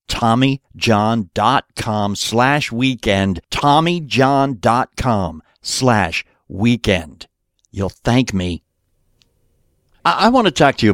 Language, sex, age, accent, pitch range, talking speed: English, male, 60-79, American, 100-135 Hz, 80 wpm